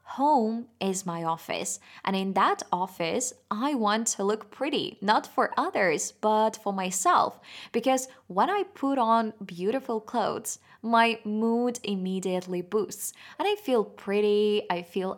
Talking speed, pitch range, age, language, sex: 140 wpm, 190-260 Hz, 20-39, Russian, female